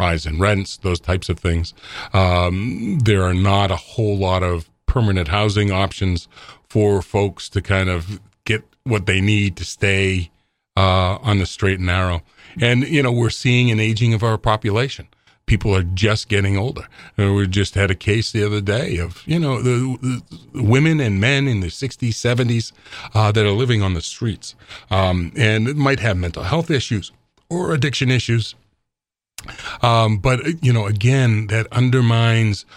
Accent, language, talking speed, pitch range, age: American, English, 170 wpm, 95-120 Hz, 40-59